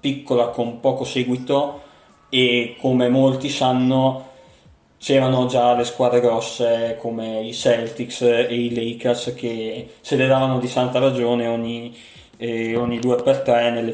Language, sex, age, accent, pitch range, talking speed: Italian, male, 20-39, native, 120-145 Hz, 125 wpm